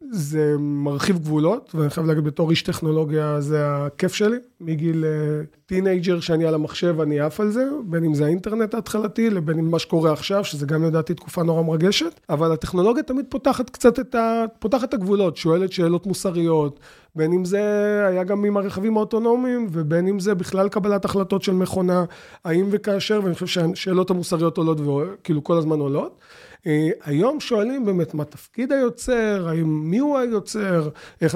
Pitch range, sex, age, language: 160-205 Hz, male, 30-49, Hebrew